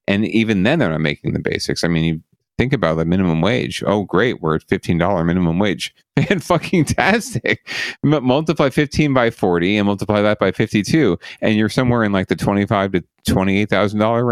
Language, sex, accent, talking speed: English, male, American, 180 wpm